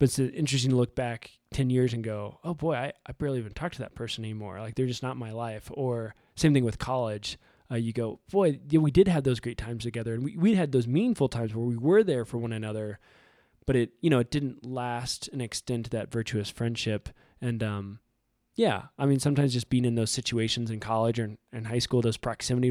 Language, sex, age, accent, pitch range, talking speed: English, male, 20-39, American, 110-135 Hz, 245 wpm